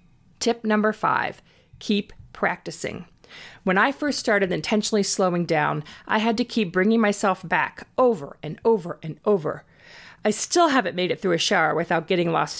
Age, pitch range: 40-59, 180-245 Hz